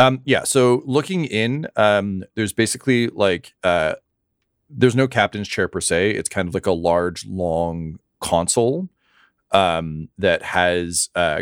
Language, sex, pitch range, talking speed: English, male, 85-110 Hz, 145 wpm